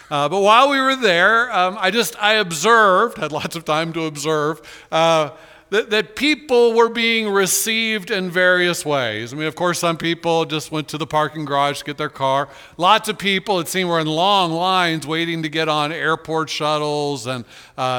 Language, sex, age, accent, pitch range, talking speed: English, male, 50-69, American, 145-180 Hz, 200 wpm